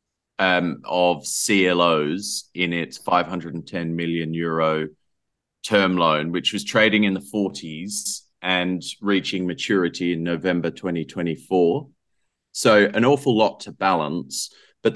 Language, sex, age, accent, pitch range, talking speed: English, male, 30-49, Australian, 85-100 Hz, 115 wpm